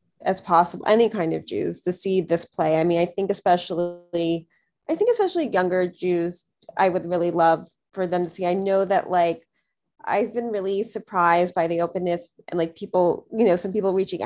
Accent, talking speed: American, 200 wpm